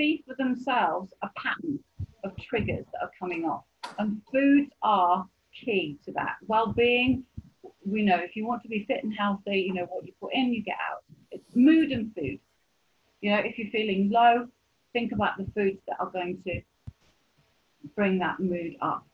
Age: 40-59